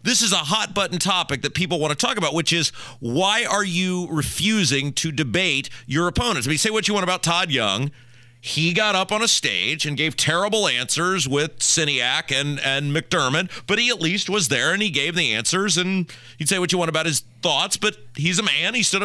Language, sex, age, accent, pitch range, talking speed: English, male, 30-49, American, 125-195 Hz, 225 wpm